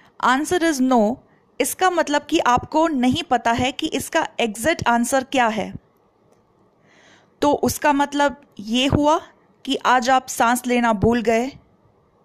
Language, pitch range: Hindi, 235-285 Hz